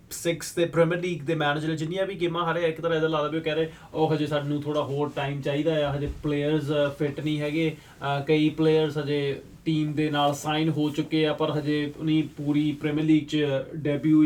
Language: Punjabi